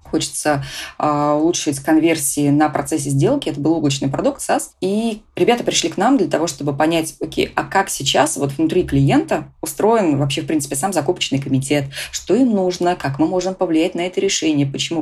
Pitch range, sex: 145-170 Hz, female